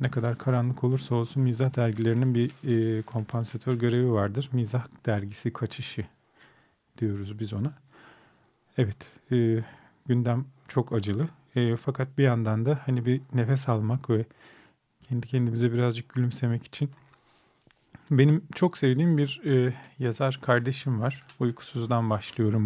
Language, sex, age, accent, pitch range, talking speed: Turkish, male, 40-59, native, 120-135 Hz, 125 wpm